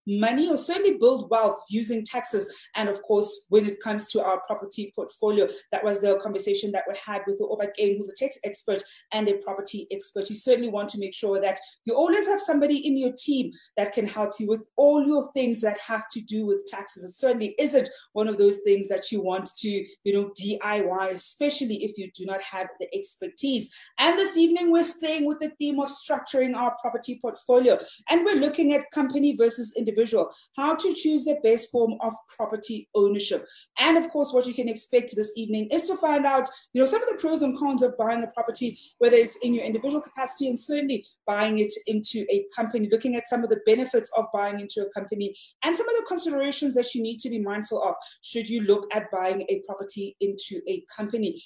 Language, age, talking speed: English, 30-49, 215 wpm